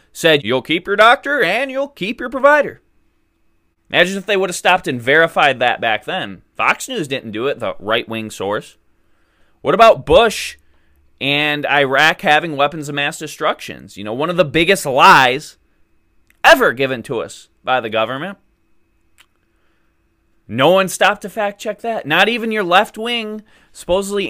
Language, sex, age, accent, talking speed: English, male, 20-39, American, 160 wpm